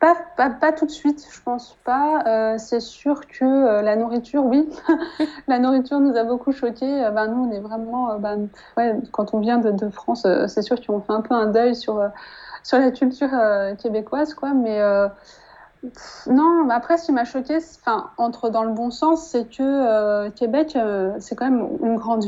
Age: 20-39